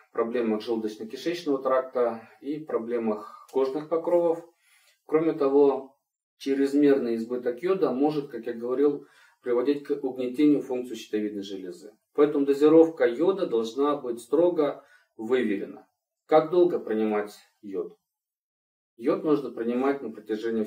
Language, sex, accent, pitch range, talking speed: Russian, male, native, 110-145 Hz, 110 wpm